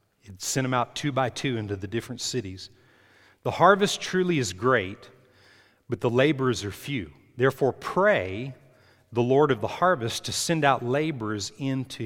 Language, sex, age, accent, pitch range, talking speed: English, male, 40-59, American, 100-130 Hz, 160 wpm